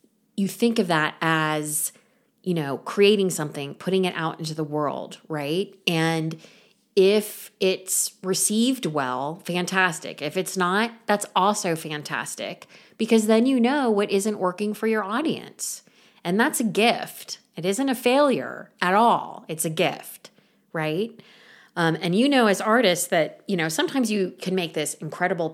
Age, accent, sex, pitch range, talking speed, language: 30-49, American, female, 160-225 Hz, 155 wpm, English